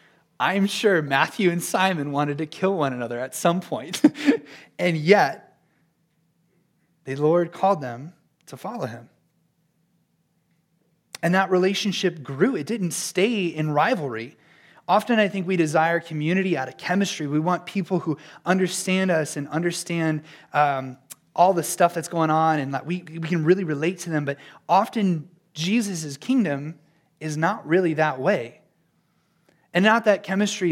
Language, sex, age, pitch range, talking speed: English, male, 30-49, 145-175 Hz, 150 wpm